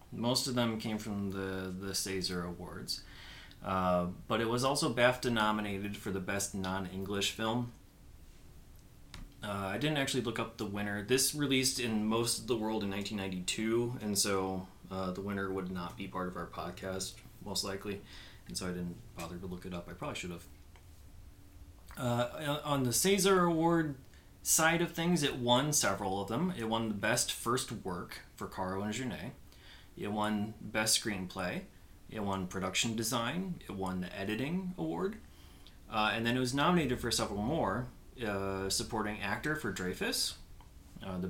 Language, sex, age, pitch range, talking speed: English, male, 30-49, 95-125 Hz, 170 wpm